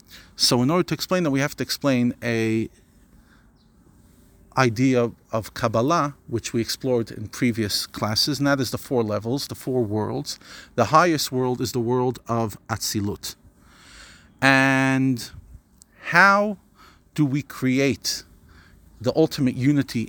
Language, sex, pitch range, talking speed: English, male, 110-140 Hz, 135 wpm